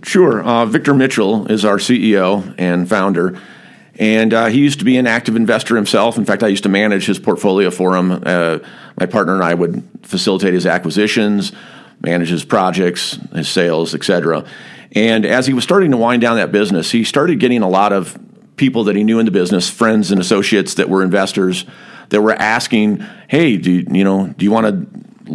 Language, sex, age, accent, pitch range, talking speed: English, male, 40-59, American, 100-130 Hz, 205 wpm